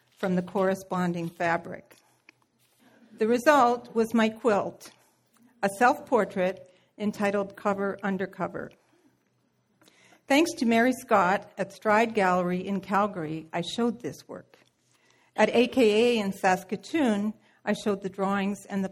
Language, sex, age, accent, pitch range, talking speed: English, female, 60-79, American, 185-230 Hz, 120 wpm